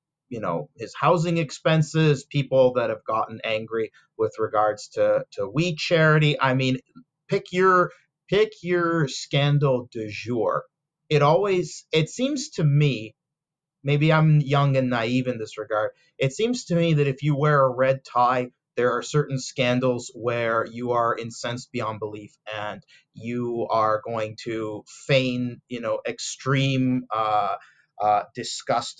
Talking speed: 150 wpm